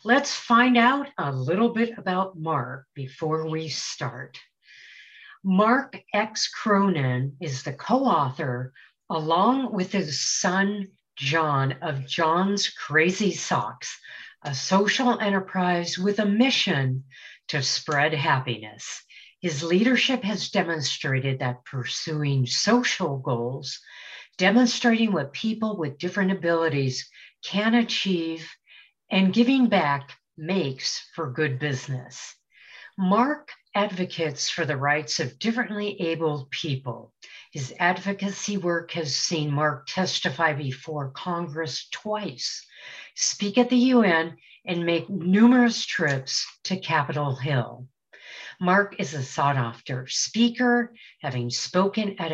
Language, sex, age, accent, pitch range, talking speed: English, female, 50-69, American, 140-200 Hz, 110 wpm